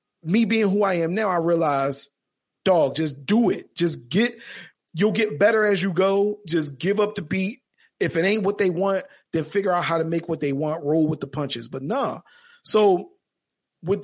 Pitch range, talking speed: 155-210 Hz, 205 wpm